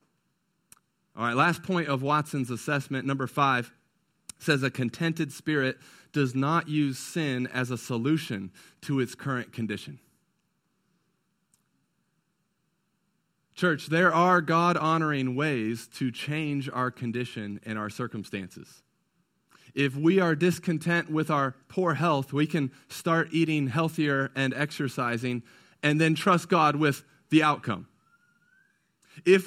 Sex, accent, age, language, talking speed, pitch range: male, American, 40-59, English, 120 wpm, 135-180 Hz